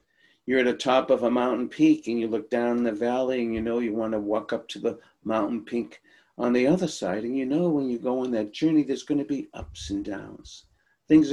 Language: English